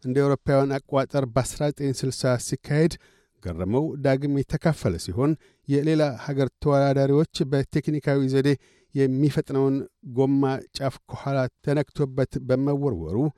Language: Amharic